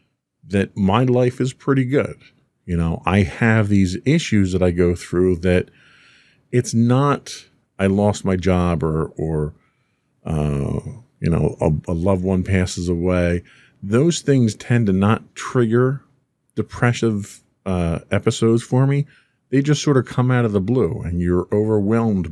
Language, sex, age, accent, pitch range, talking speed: English, male, 40-59, American, 90-125 Hz, 155 wpm